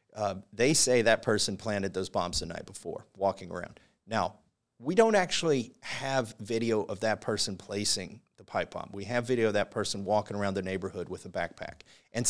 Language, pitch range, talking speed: English, 105-130 Hz, 195 wpm